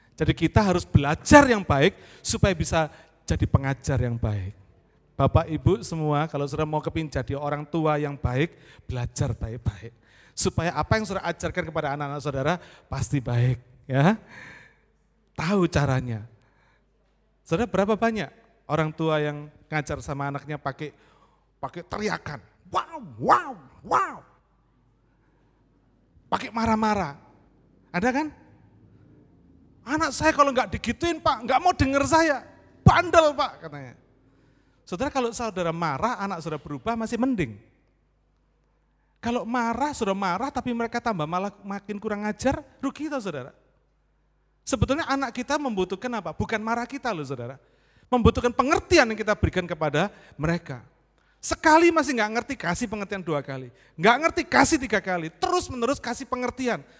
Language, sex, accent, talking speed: English, male, Indonesian, 135 wpm